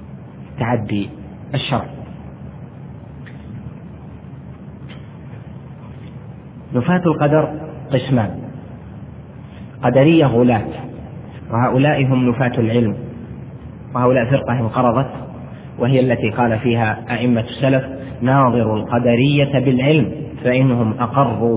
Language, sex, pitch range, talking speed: Arabic, male, 115-145 Hz, 70 wpm